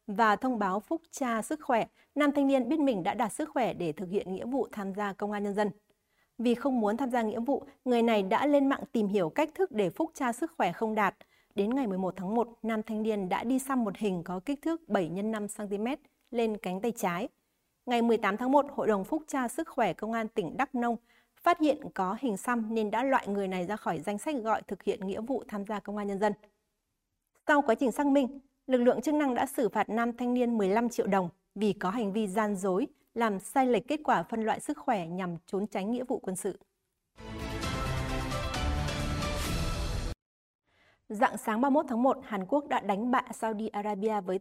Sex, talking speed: female, 225 wpm